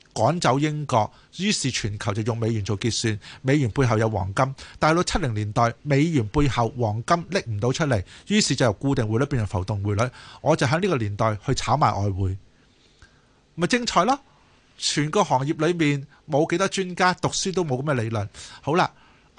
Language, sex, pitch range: Chinese, male, 110-155 Hz